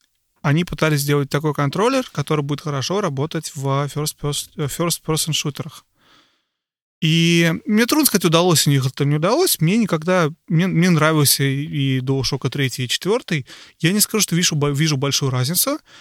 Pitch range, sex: 140-170 Hz, male